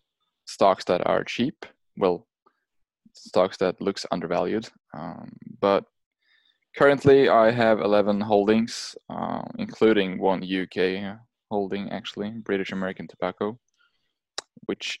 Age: 20-39